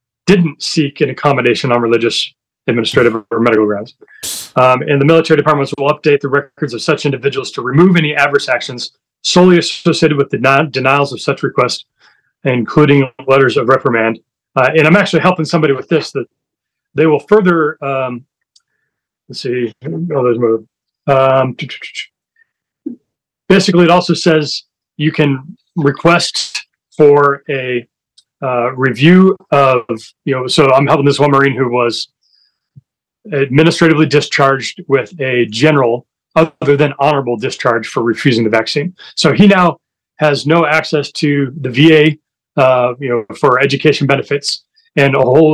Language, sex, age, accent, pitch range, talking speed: English, male, 40-59, American, 130-155 Hz, 140 wpm